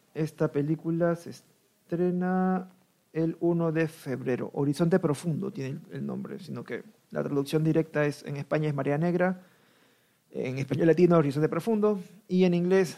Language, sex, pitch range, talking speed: Spanish, male, 145-185 Hz, 150 wpm